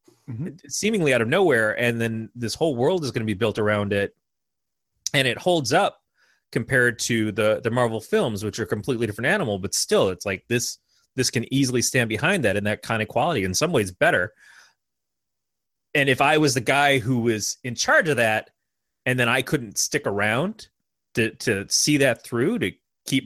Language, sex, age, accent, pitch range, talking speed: English, male, 30-49, American, 115-145 Hz, 200 wpm